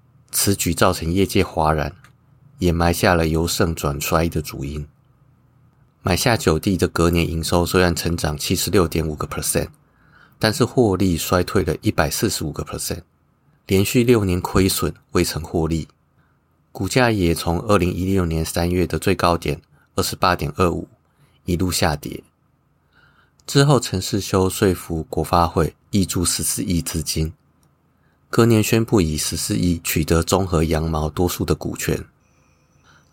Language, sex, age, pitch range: Chinese, male, 30-49, 80-95 Hz